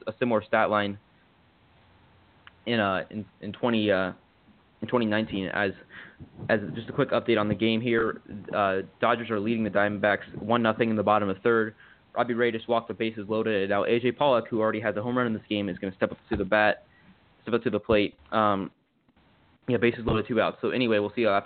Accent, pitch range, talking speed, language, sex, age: American, 105-120 Hz, 225 wpm, English, male, 20-39